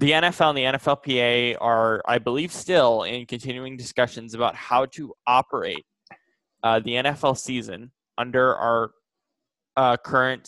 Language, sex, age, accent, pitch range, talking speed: English, male, 10-29, American, 120-140 Hz, 135 wpm